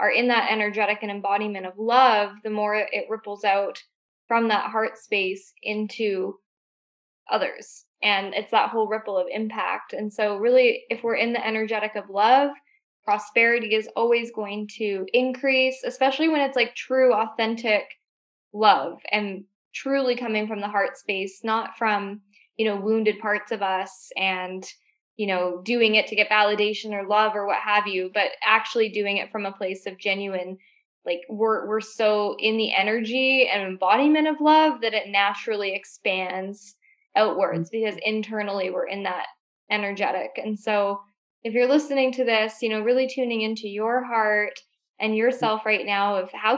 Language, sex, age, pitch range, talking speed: English, female, 10-29, 200-230 Hz, 165 wpm